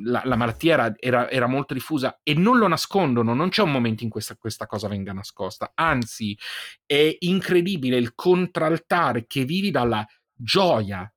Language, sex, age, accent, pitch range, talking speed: Italian, male, 40-59, native, 120-175 Hz, 160 wpm